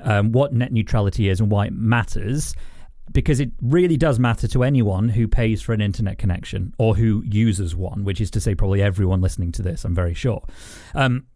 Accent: British